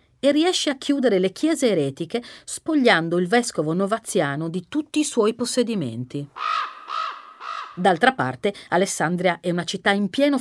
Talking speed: 140 wpm